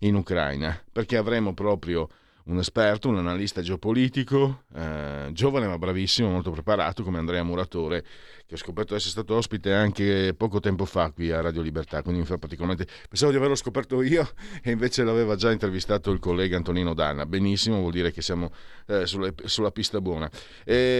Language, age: Italian, 40-59